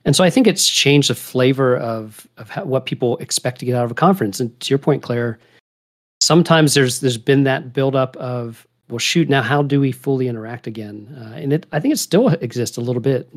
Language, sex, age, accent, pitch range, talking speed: English, male, 40-59, American, 115-140 Hz, 235 wpm